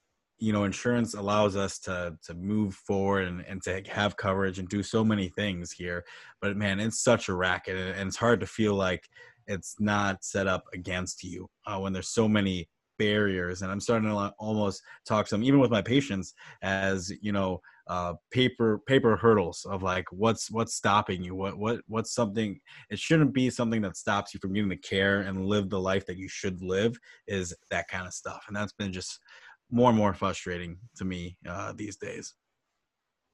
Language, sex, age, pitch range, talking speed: English, male, 20-39, 95-115 Hz, 200 wpm